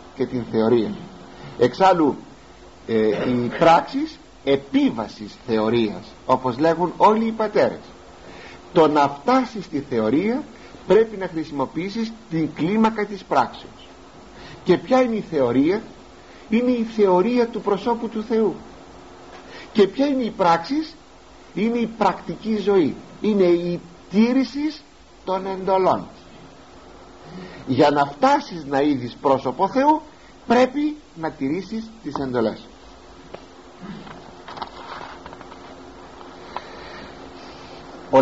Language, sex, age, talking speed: Greek, male, 50-69, 100 wpm